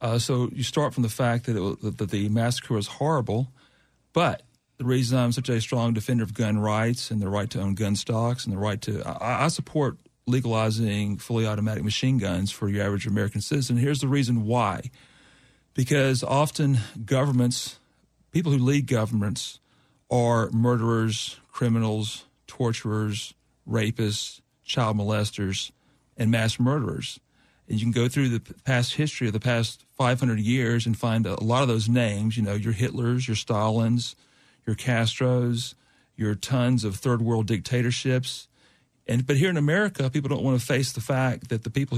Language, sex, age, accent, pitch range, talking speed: English, male, 40-59, American, 110-130 Hz, 170 wpm